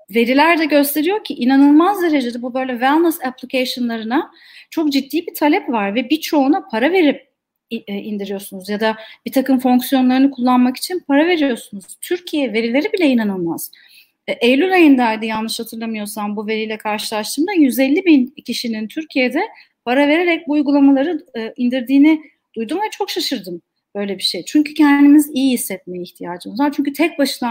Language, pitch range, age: Turkish, 230-300 Hz, 40-59